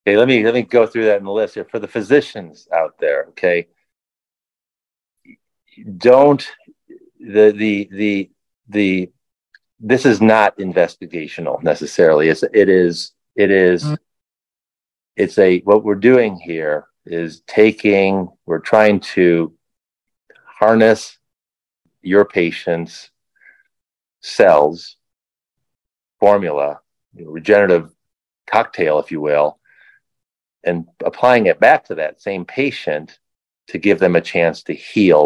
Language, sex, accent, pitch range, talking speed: English, male, American, 85-110 Hz, 115 wpm